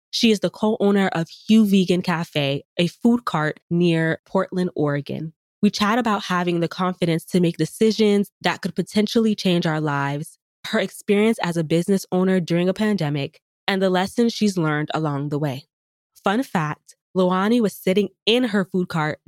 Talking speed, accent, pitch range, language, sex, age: 170 wpm, American, 155-195 Hz, English, female, 20-39